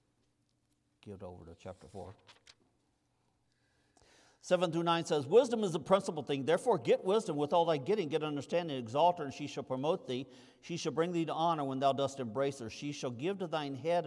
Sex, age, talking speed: male, 50-69, 200 wpm